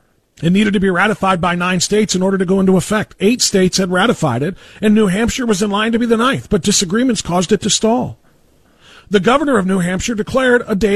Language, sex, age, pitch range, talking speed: English, male, 40-59, 150-205 Hz, 235 wpm